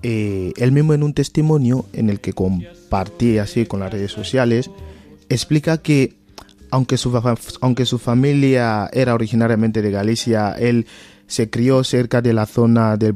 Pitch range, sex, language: 100-120 Hz, male, Spanish